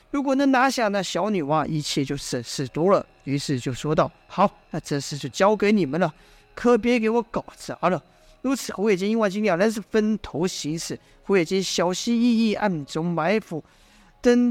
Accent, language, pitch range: native, Chinese, 170-225 Hz